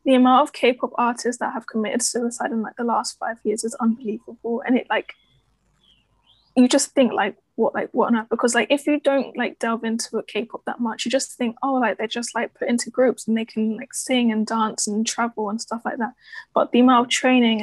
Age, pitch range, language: 10-29, 225-255 Hz, English